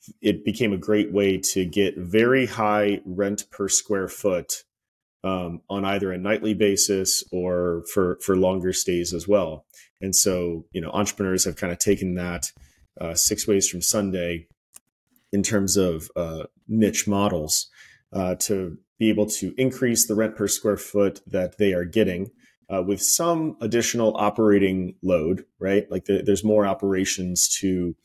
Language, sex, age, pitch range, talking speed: English, male, 30-49, 90-105 Hz, 160 wpm